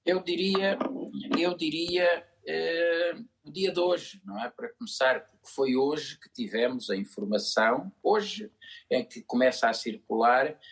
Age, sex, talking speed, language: 50-69, male, 145 wpm, Portuguese